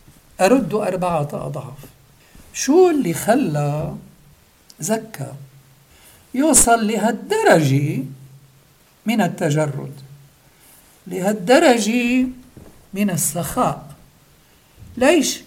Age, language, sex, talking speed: 60-79, English, male, 60 wpm